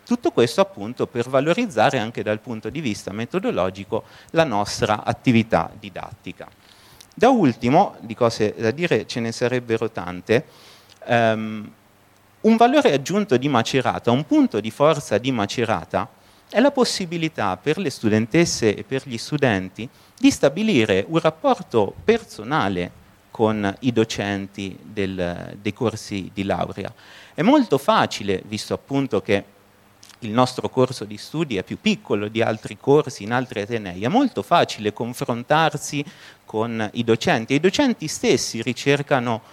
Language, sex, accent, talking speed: Italian, male, native, 135 wpm